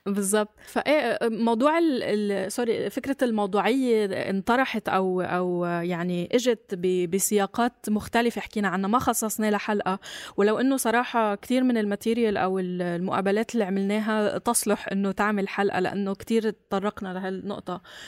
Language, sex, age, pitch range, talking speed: Arabic, female, 20-39, 205-245 Hz, 125 wpm